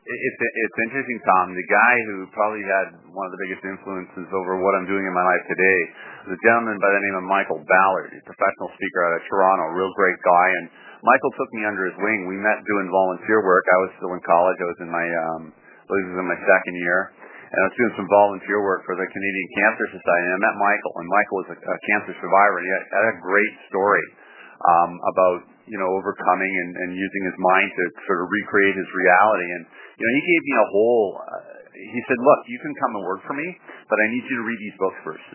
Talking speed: 240 wpm